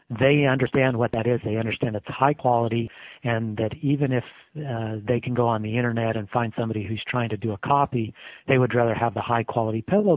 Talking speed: 225 wpm